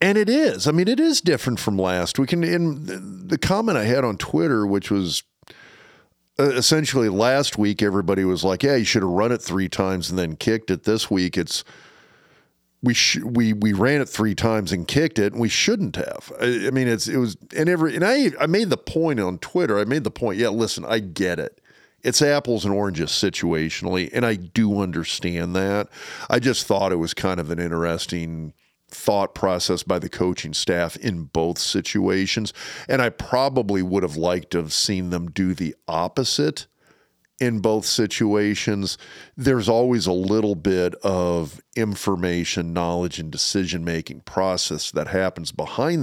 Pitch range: 85-115 Hz